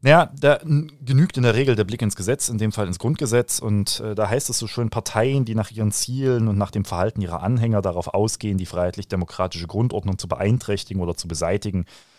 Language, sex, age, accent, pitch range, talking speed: German, male, 30-49, German, 90-120 Hz, 210 wpm